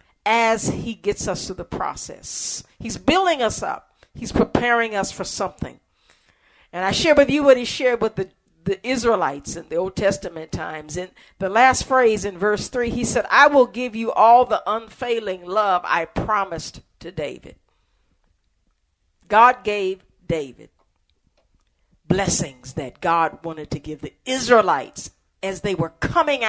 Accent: American